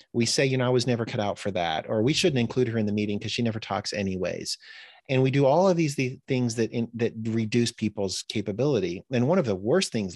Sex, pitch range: male, 105-130 Hz